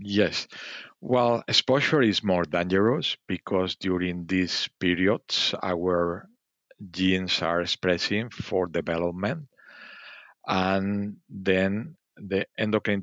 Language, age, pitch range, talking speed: English, 50-69, 85-100 Hz, 90 wpm